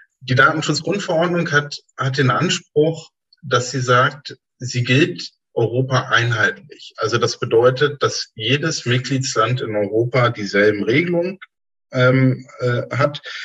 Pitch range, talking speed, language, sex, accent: 105-135 Hz, 115 wpm, German, male, German